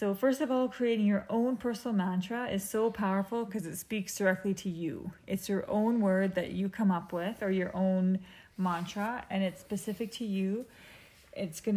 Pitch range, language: 185-220 Hz, English